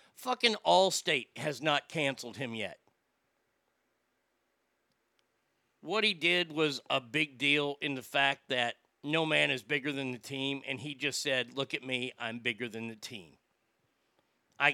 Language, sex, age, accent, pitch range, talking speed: English, male, 50-69, American, 125-160 Hz, 155 wpm